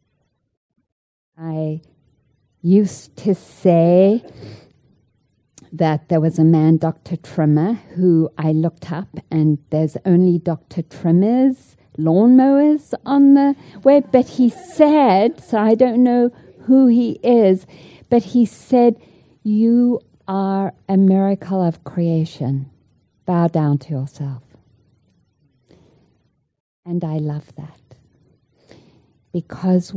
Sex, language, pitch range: female, English, 150-190 Hz